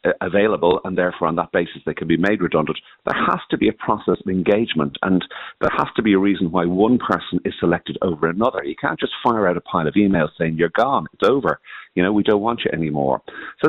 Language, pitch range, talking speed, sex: English, 85-105 Hz, 240 wpm, male